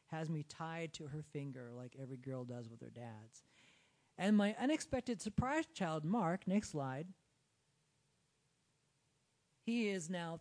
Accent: American